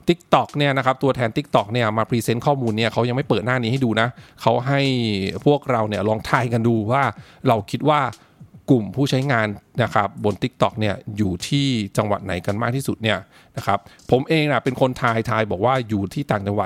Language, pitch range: English, 110-140 Hz